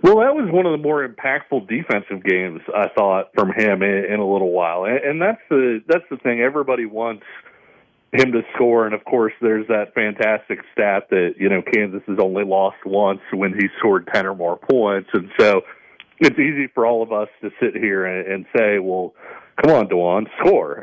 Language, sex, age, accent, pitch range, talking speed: English, male, 40-59, American, 105-140 Hz, 205 wpm